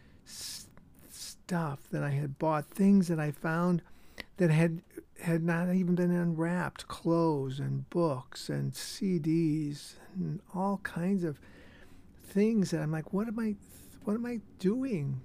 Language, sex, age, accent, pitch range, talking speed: English, male, 60-79, American, 145-175 Hz, 140 wpm